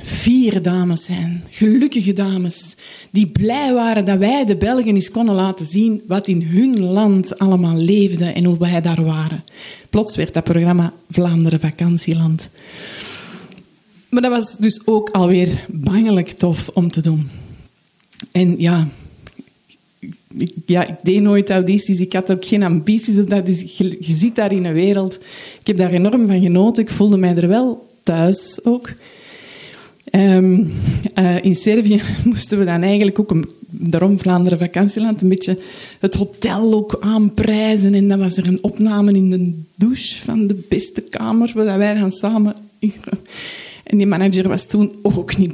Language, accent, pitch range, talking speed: Dutch, Dutch, 180-215 Hz, 155 wpm